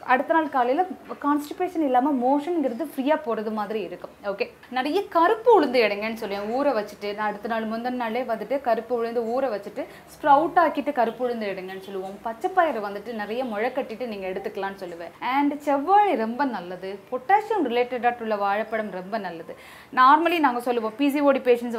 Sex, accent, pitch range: female, native, 220-290 Hz